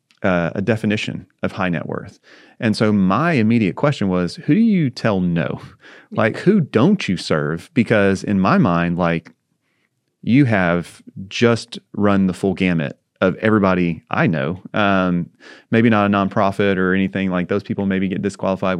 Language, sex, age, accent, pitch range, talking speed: English, male, 30-49, American, 90-105 Hz, 165 wpm